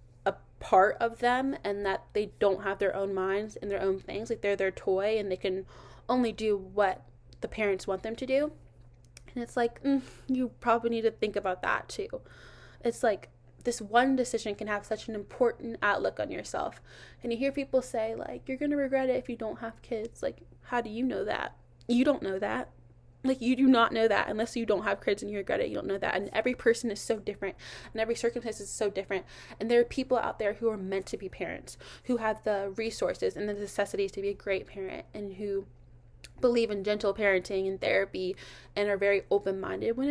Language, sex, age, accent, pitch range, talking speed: English, female, 20-39, American, 190-235 Hz, 225 wpm